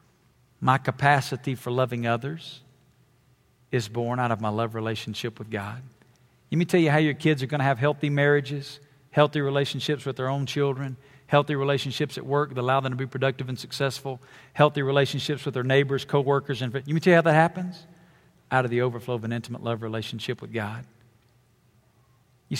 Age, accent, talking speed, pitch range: 50-69, American, 185 wpm, 120-145 Hz